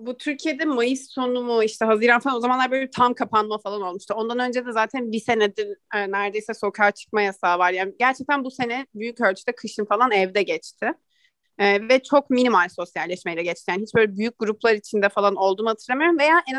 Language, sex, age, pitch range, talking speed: English, female, 30-49, 215-275 Hz, 195 wpm